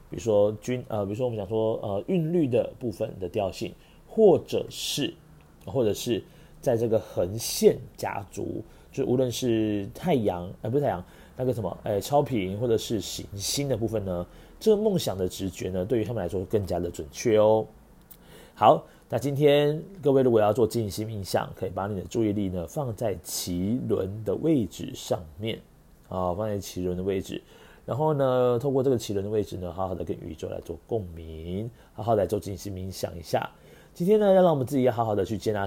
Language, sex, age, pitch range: Chinese, male, 30-49, 95-125 Hz